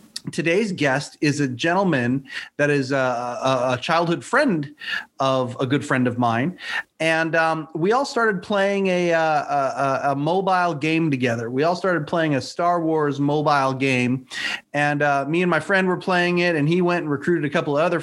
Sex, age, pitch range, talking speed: male, 30-49, 140-175 Hz, 185 wpm